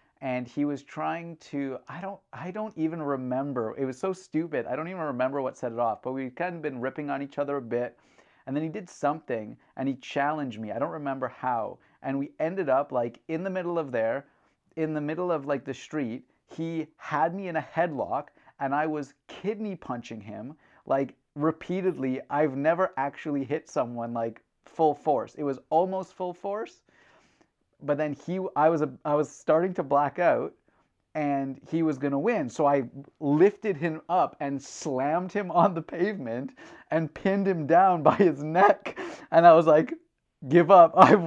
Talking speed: 195 wpm